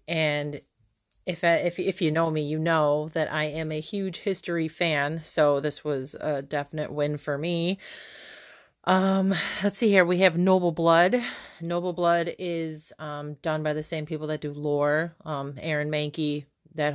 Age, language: 30-49, English